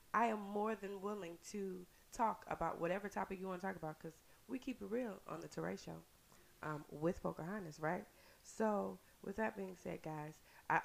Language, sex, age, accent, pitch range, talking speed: English, female, 20-39, American, 140-180 Hz, 190 wpm